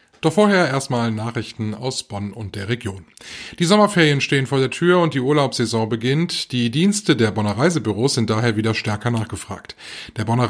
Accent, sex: German, male